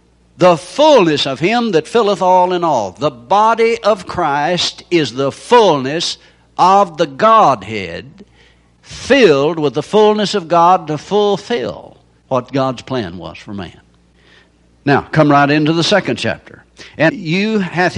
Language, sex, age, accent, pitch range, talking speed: English, male, 60-79, American, 135-195 Hz, 145 wpm